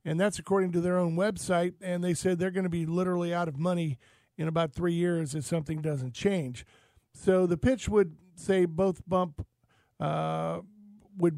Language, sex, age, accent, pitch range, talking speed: English, male, 50-69, American, 165-190 Hz, 185 wpm